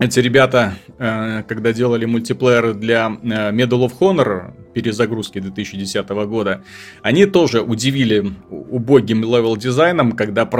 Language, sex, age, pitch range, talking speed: Russian, male, 30-49, 115-165 Hz, 100 wpm